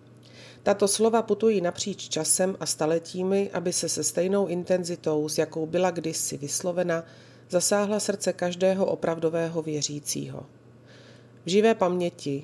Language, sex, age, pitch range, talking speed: Slovak, female, 30-49, 155-185 Hz, 120 wpm